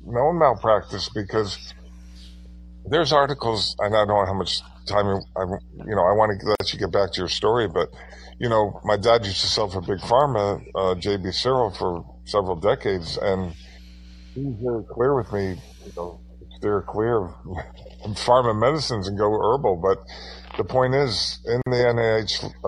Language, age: English, 50-69